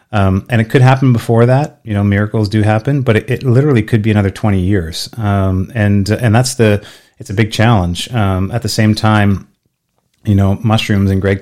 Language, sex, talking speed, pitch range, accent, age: English, male, 210 wpm, 95-110 Hz, American, 30-49